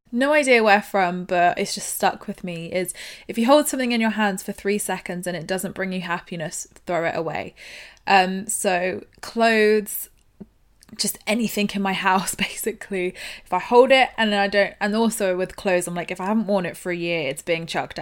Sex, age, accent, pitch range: female, 20-39, British, 180-220 Hz